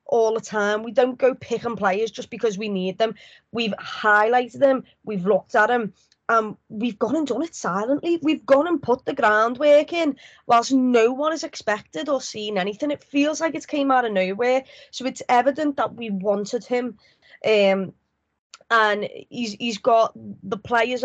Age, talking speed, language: 20-39, 180 wpm, English